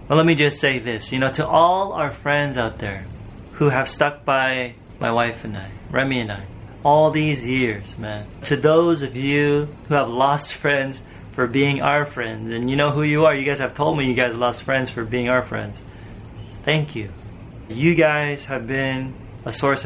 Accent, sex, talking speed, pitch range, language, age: American, male, 200 wpm, 120-145 Hz, English, 30-49